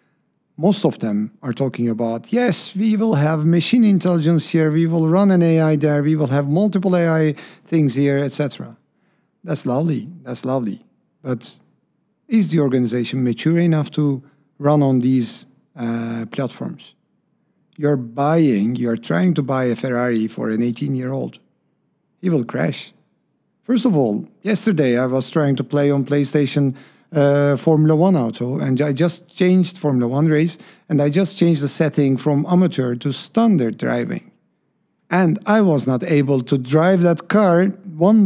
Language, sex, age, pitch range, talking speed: English, male, 50-69, 130-180 Hz, 155 wpm